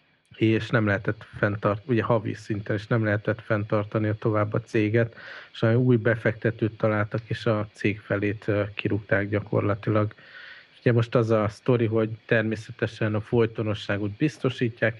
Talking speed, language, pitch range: 150 wpm, Hungarian, 105-115 Hz